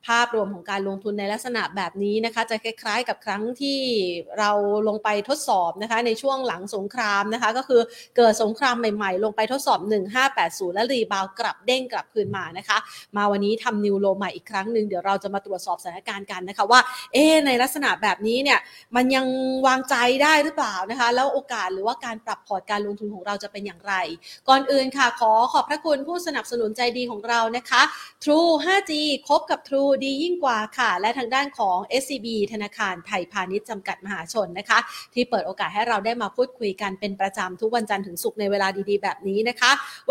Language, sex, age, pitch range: Thai, female, 30-49, 205-260 Hz